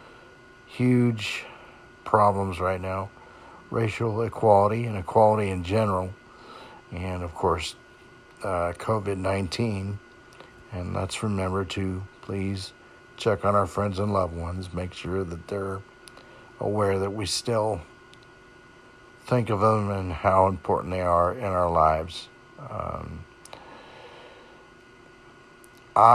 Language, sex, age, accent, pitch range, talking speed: English, male, 60-79, American, 95-110 Hz, 110 wpm